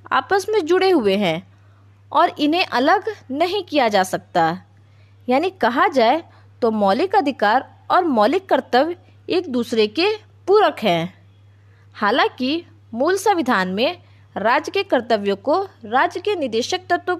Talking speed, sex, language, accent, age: 135 wpm, female, Hindi, native, 20-39